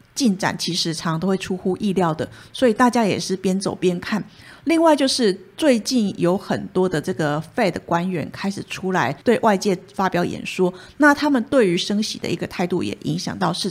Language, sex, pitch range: Chinese, female, 175-220 Hz